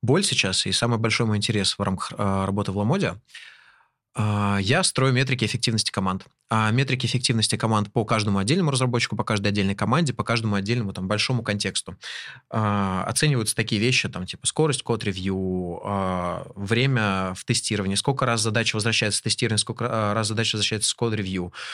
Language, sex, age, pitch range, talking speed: Russian, male, 20-39, 100-125 Hz, 170 wpm